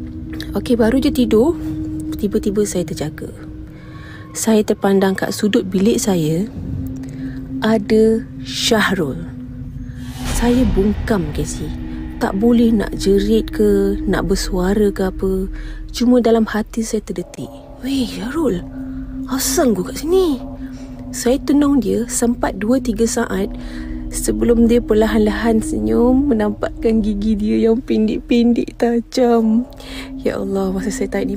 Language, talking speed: Malay, 115 wpm